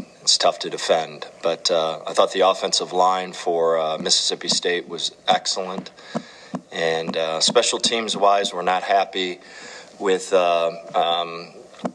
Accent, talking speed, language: American, 140 wpm, English